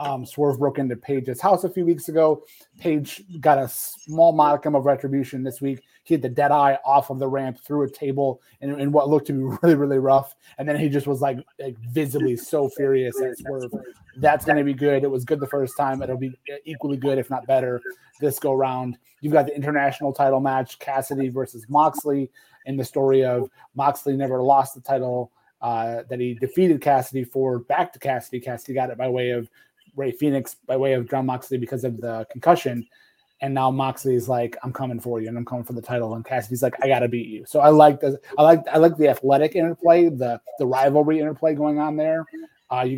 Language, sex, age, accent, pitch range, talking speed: English, male, 30-49, American, 130-150 Hz, 220 wpm